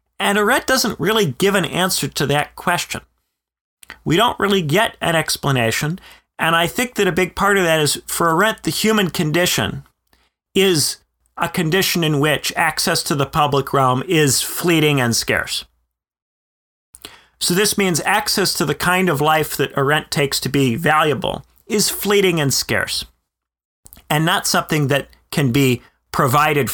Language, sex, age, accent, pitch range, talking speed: English, male, 40-59, American, 130-180 Hz, 160 wpm